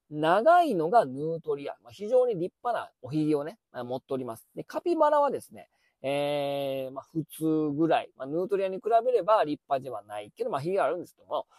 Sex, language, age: male, Japanese, 40-59